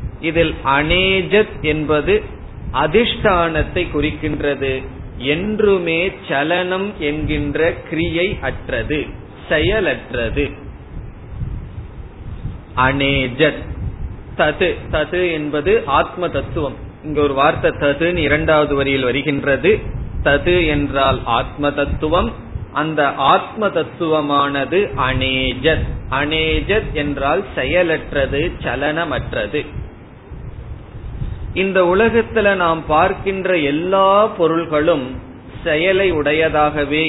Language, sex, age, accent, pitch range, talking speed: Tamil, male, 30-49, native, 135-175 Hz, 65 wpm